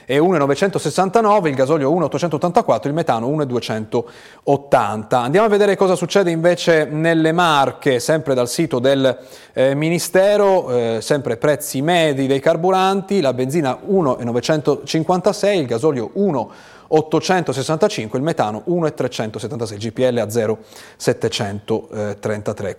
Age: 30-49